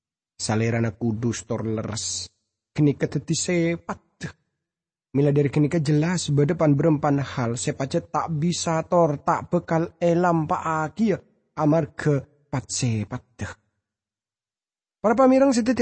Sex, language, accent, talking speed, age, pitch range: male, English, Indonesian, 100 wpm, 30-49, 125-175 Hz